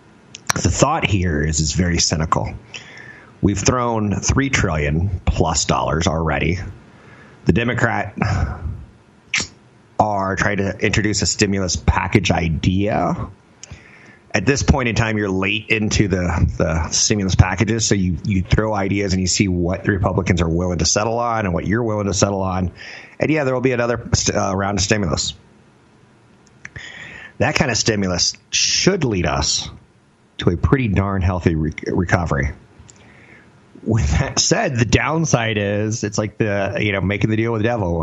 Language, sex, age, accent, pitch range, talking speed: English, male, 30-49, American, 90-115 Hz, 155 wpm